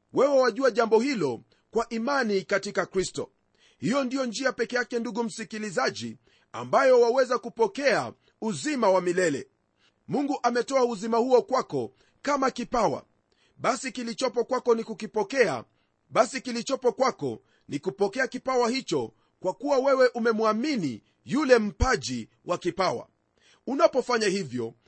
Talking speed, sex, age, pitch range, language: 120 wpm, male, 40-59, 215-260 Hz, Swahili